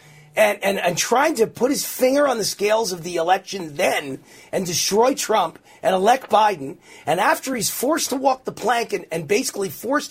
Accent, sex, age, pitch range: American, male, 40-59, 175-285 Hz